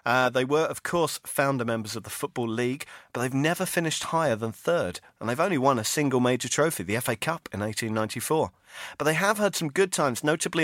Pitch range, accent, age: 115-150 Hz, British, 40-59